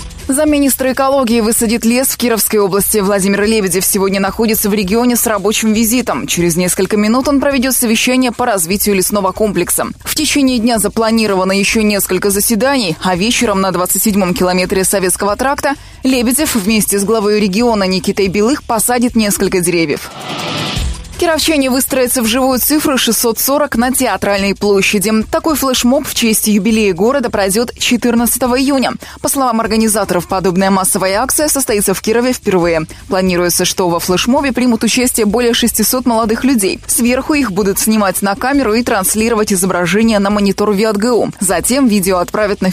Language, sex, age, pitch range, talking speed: Russian, female, 20-39, 195-250 Hz, 145 wpm